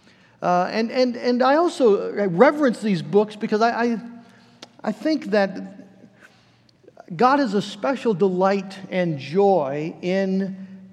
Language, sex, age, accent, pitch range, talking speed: English, male, 50-69, American, 175-210 Hz, 135 wpm